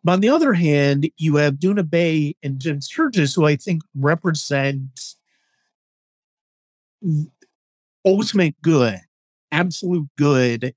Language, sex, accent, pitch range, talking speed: English, male, American, 130-165 Hz, 110 wpm